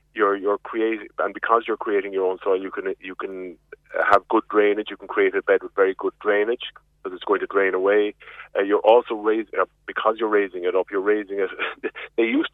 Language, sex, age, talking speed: English, male, 30-49, 225 wpm